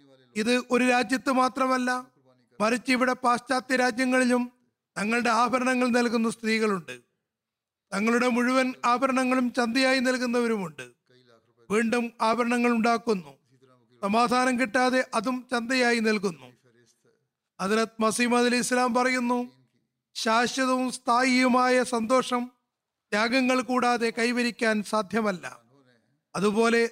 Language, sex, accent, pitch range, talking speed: Malayalam, male, native, 190-250 Hz, 85 wpm